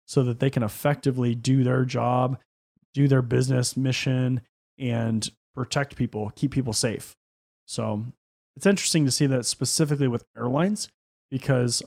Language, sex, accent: English, male, American